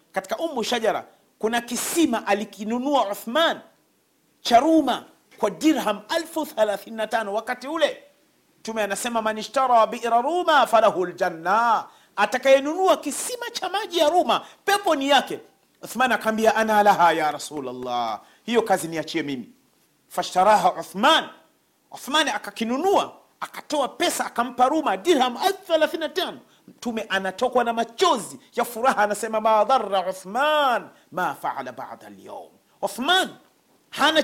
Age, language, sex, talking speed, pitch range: 40-59, Swahili, male, 105 wpm, 205-305 Hz